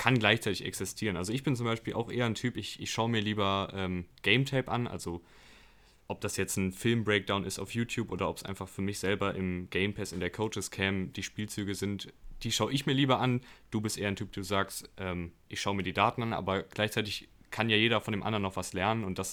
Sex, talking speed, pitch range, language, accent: male, 250 wpm, 95-115 Hz, German, German